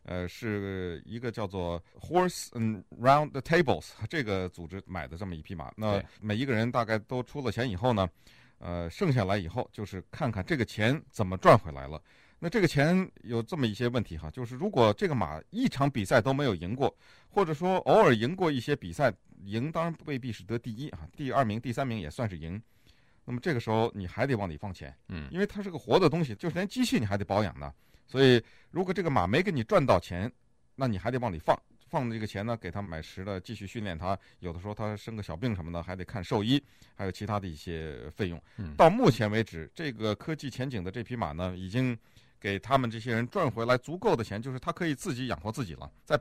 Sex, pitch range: male, 95-130 Hz